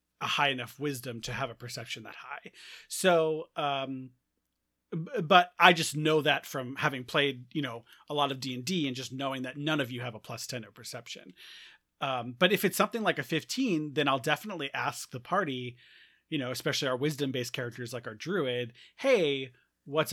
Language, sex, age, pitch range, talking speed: English, male, 30-49, 125-160 Hz, 205 wpm